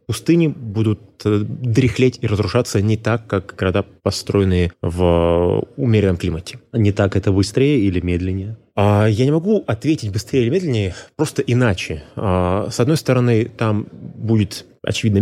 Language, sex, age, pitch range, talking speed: Russian, male, 20-39, 100-125 Hz, 140 wpm